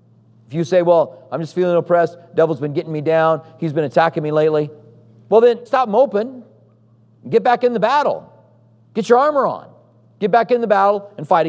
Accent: American